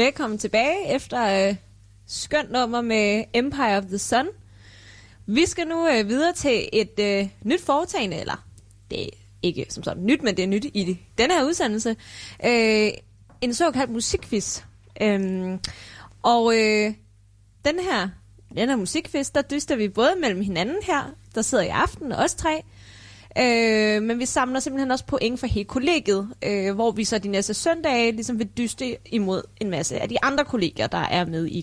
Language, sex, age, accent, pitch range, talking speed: Danish, female, 20-39, native, 175-260 Hz, 175 wpm